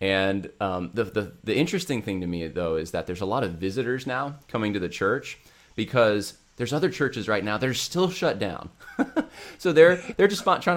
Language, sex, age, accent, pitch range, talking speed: English, male, 20-39, American, 95-125 Hz, 205 wpm